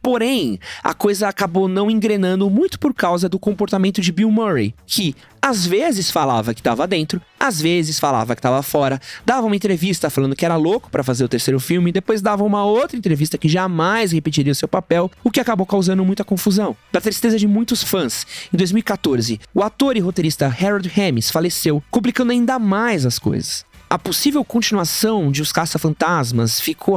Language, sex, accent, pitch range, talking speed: Portuguese, male, Brazilian, 160-235 Hz, 185 wpm